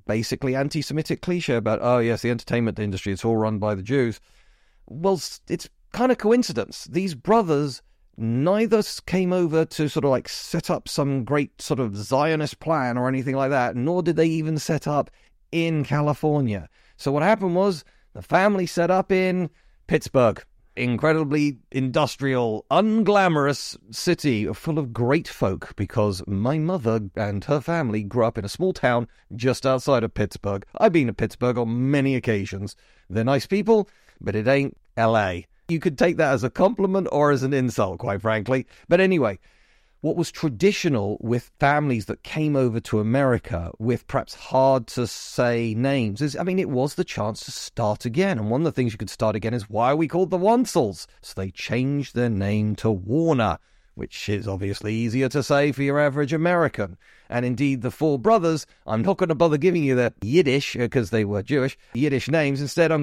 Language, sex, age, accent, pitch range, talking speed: English, male, 30-49, British, 115-165 Hz, 185 wpm